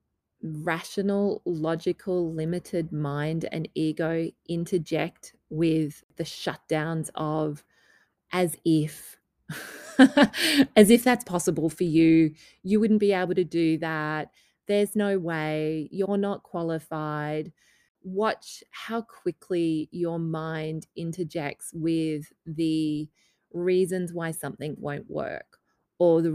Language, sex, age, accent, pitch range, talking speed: English, female, 20-39, Australian, 155-185 Hz, 105 wpm